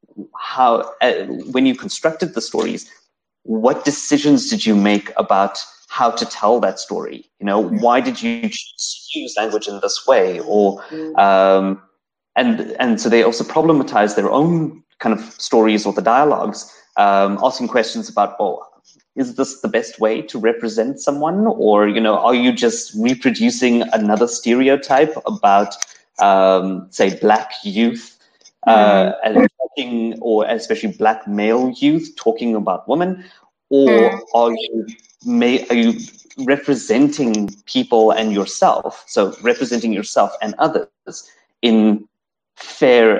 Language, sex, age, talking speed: English, male, 30-49, 135 wpm